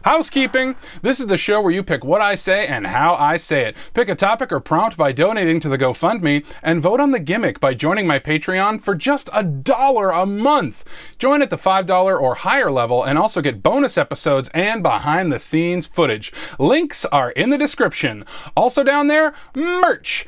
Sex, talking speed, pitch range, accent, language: male, 190 wpm, 160-270 Hz, American, English